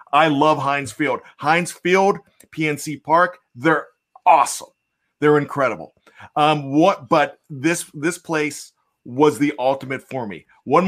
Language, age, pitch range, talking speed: English, 40-59, 140-185 Hz, 130 wpm